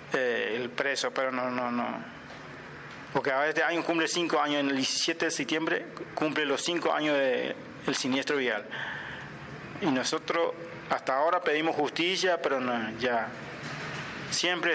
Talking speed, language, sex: 140 wpm, Spanish, male